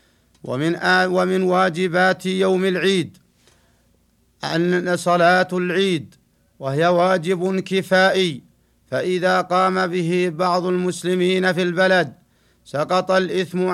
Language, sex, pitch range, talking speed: Arabic, male, 175-185 Hz, 85 wpm